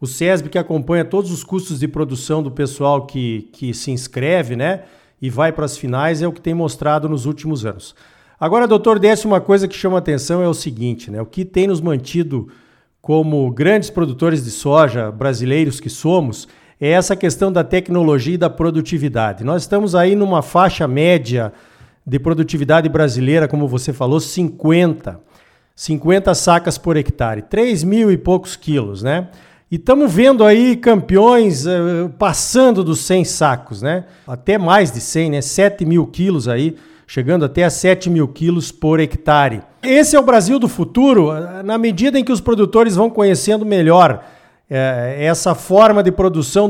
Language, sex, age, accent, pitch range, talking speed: Portuguese, male, 50-69, Brazilian, 145-190 Hz, 170 wpm